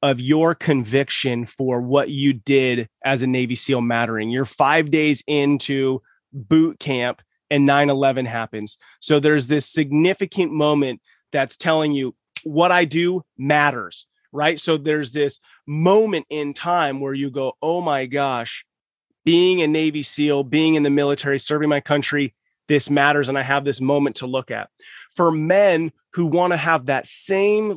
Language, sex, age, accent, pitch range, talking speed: English, male, 30-49, American, 135-160 Hz, 160 wpm